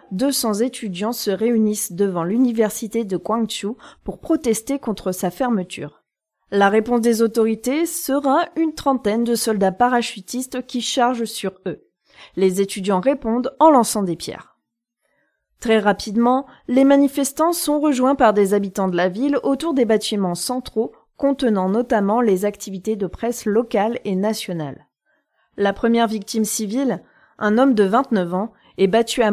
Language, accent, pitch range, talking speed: French, French, 200-255 Hz, 145 wpm